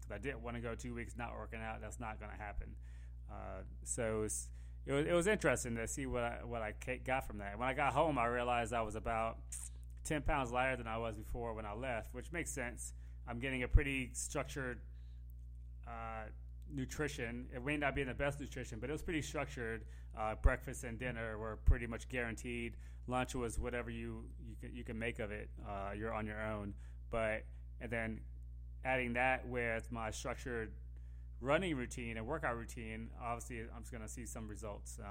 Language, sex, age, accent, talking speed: English, male, 20-39, American, 200 wpm